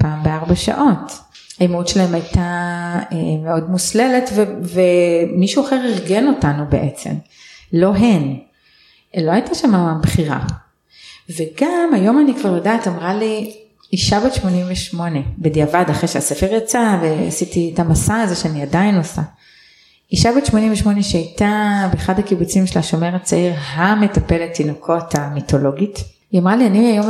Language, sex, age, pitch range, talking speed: Hebrew, female, 30-49, 170-215 Hz, 130 wpm